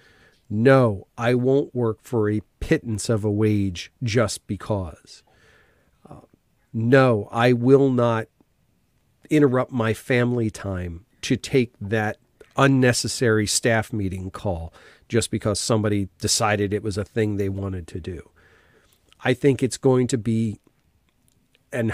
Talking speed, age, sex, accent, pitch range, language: 130 wpm, 40-59, male, American, 105-130 Hz, English